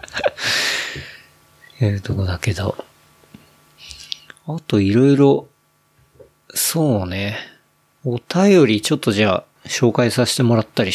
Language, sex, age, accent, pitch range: Japanese, male, 40-59, native, 110-140 Hz